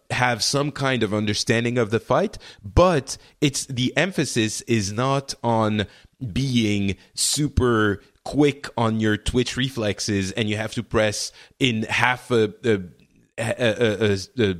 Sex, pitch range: male, 100-130 Hz